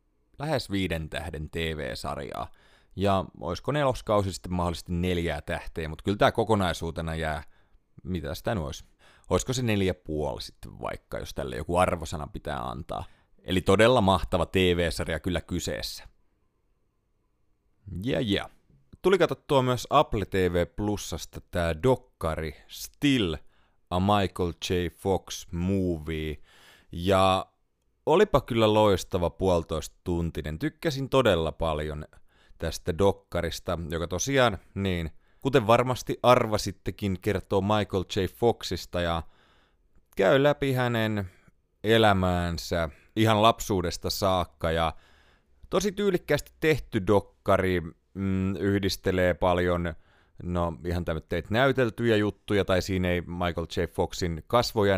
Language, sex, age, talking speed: Finnish, male, 30-49, 115 wpm